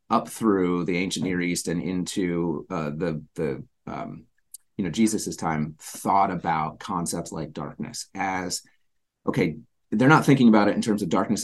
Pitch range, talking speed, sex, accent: 80-105 Hz, 170 wpm, male, American